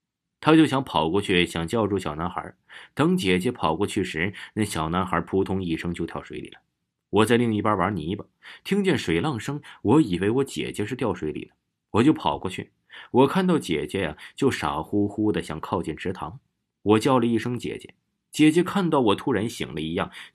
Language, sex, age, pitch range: Chinese, male, 20-39, 90-140 Hz